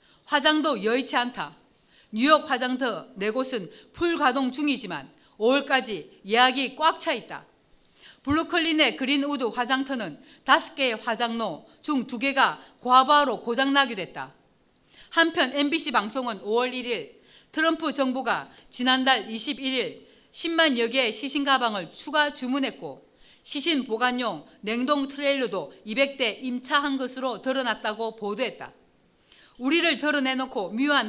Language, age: Korean, 40-59